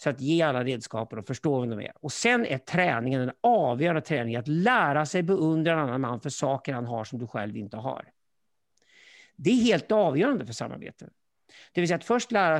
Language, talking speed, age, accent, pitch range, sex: Swedish, 215 wpm, 50-69, native, 130-180 Hz, male